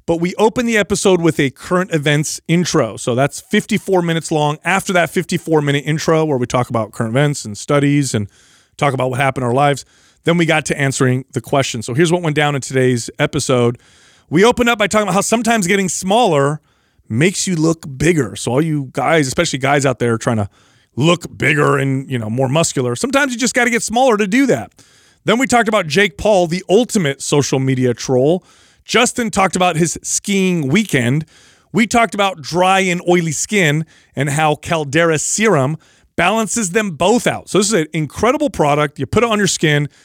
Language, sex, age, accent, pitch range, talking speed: English, male, 30-49, American, 140-190 Hz, 200 wpm